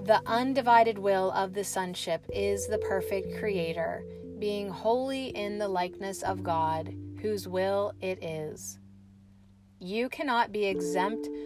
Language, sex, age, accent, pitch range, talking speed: English, female, 30-49, American, 145-210 Hz, 130 wpm